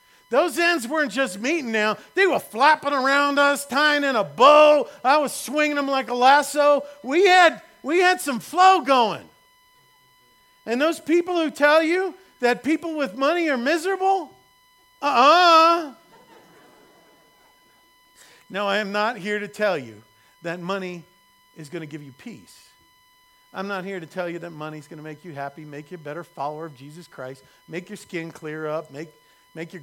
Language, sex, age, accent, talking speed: English, male, 50-69, American, 175 wpm